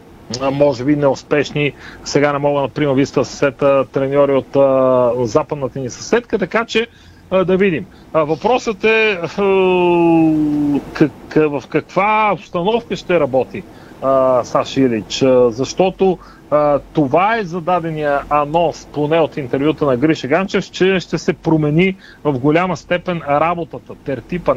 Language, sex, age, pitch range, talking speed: Bulgarian, male, 40-59, 140-175 Hz, 130 wpm